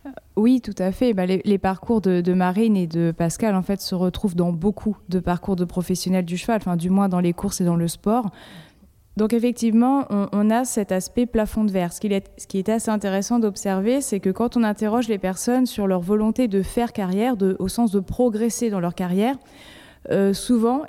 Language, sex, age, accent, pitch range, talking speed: French, female, 20-39, French, 185-225 Hz, 215 wpm